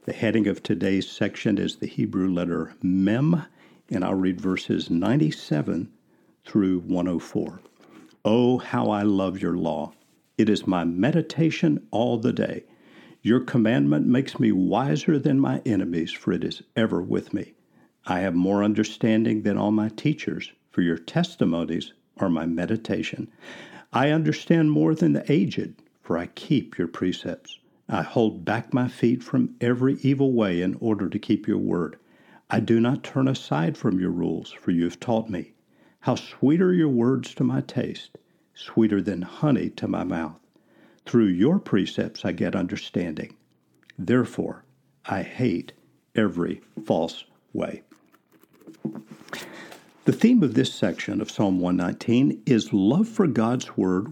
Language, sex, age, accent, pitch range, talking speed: English, male, 60-79, American, 95-130 Hz, 150 wpm